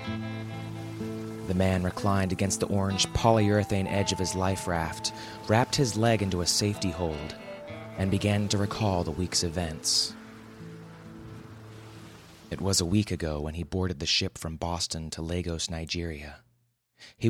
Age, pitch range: 30-49, 85-110 Hz